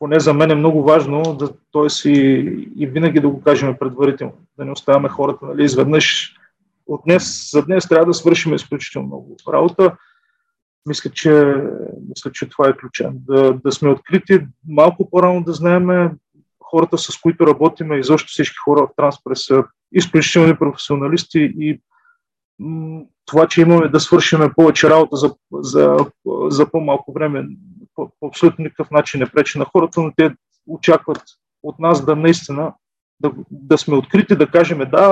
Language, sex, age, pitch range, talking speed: Bulgarian, male, 30-49, 145-175 Hz, 160 wpm